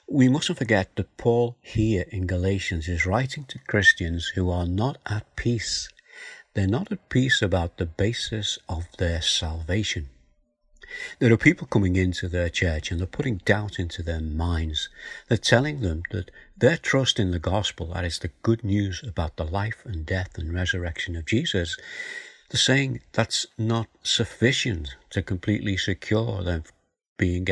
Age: 60-79